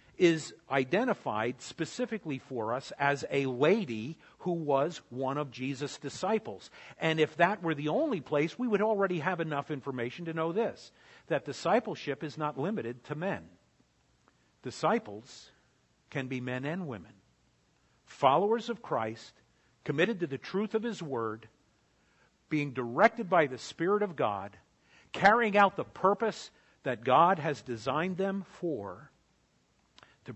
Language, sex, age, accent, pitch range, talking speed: English, male, 50-69, American, 130-190 Hz, 140 wpm